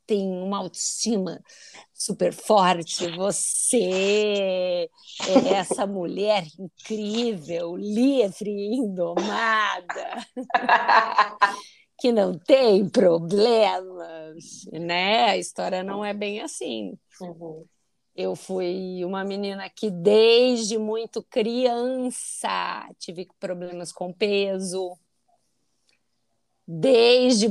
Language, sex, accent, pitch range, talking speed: Portuguese, female, Brazilian, 185-240 Hz, 80 wpm